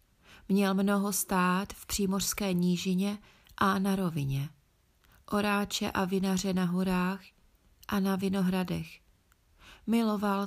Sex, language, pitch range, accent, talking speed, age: female, Czech, 180-205 Hz, native, 105 wpm, 30-49